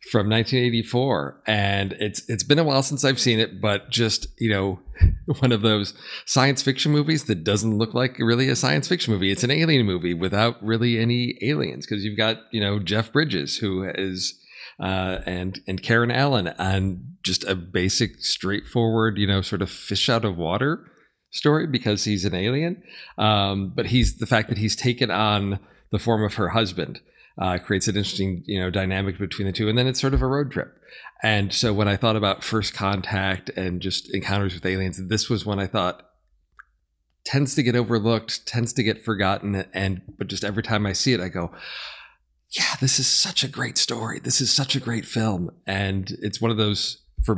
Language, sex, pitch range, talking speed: English, male, 95-120 Hz, 200 wpm